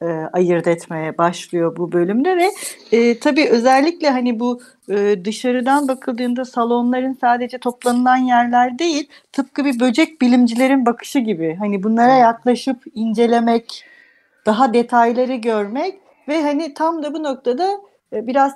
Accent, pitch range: native, 195-275 Hz